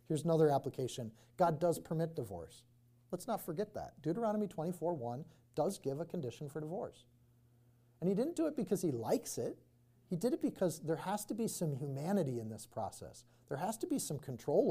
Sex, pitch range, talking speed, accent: male, 135-185 Hz, 190 wpm, American